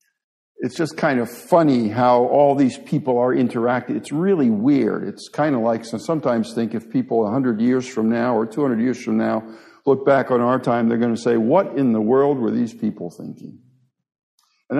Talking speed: 200 wpm